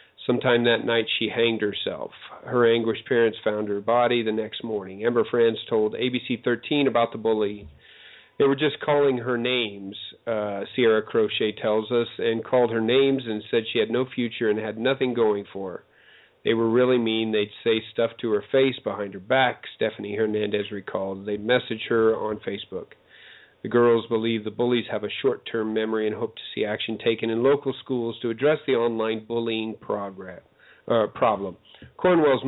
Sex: male